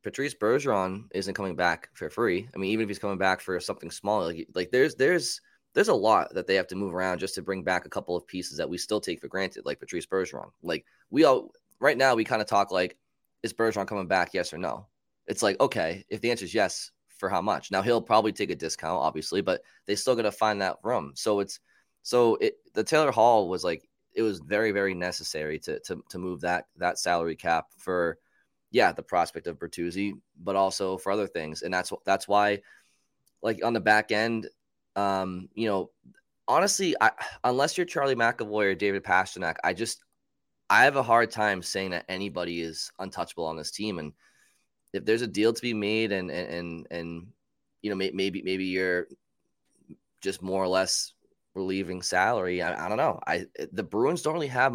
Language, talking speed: English, 210 wpm